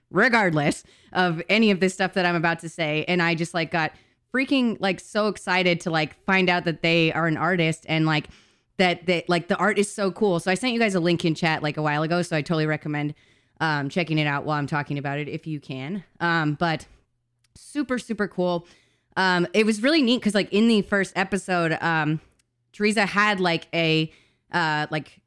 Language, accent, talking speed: English, American, 215 wpm